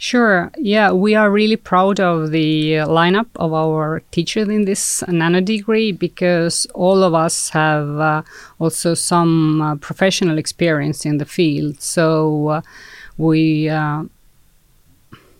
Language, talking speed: English, 140 wpm